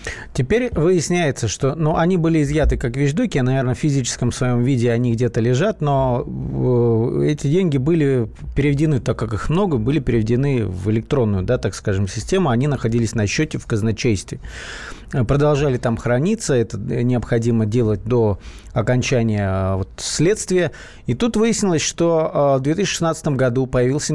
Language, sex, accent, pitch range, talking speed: Russian, male, native, 115-150 Hz, 145 wpm